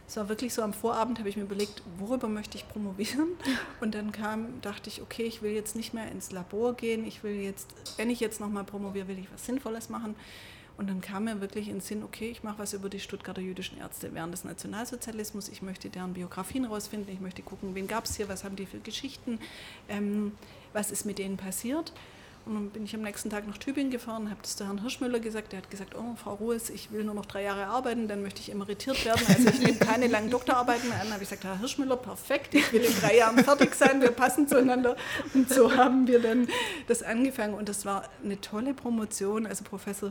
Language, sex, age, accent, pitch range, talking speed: German, female, 40-59, German, 200-235 Hz, 235 wpm